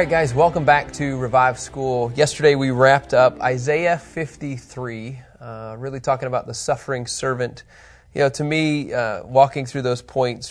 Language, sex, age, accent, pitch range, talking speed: English, male, 20-39, American, 120-145 Hz, 165 wpm